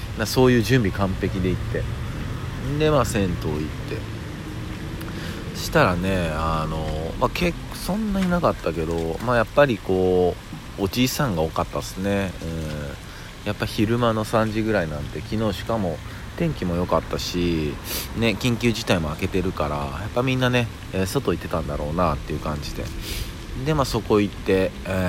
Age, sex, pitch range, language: 40-59, male, 80-110 Hz, Japanese